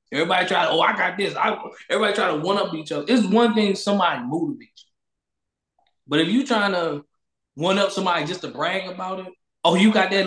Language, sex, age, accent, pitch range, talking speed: English, male, 20-39, American, 160-215 Hz, 210 wpm